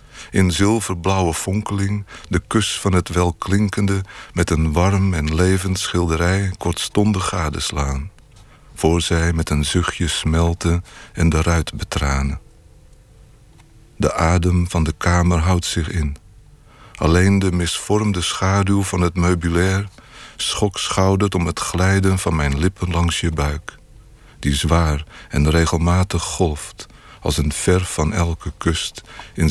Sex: male